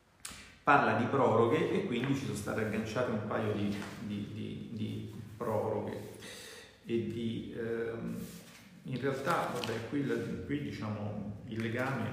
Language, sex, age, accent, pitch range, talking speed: Italian, male, 40-59, native, 115-150 Hz, 135 wpm